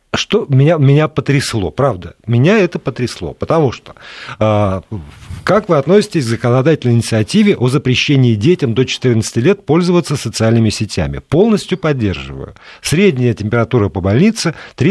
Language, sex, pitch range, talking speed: Russian, male, 110-160 Hz, 130 wpm